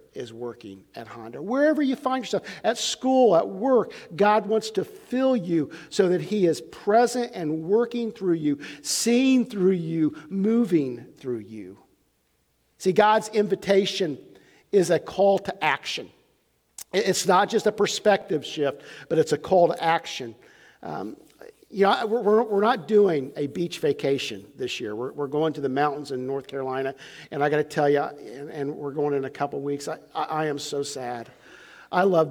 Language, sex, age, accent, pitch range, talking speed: English, male, 50-69, American, 145-205 Hz, 165 wpm